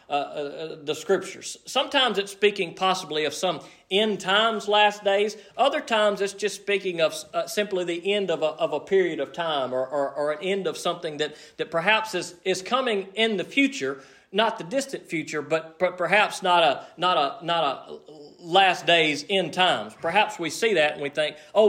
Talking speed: 200 wpm